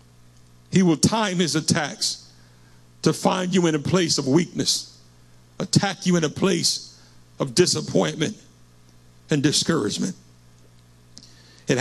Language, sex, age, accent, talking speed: English, male, 60-79, American, 115 wpm